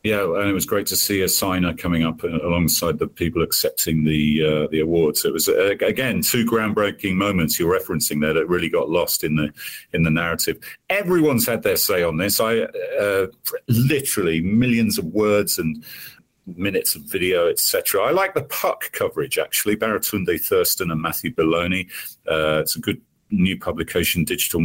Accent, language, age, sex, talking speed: British, English, 40-59, male, 180 wpm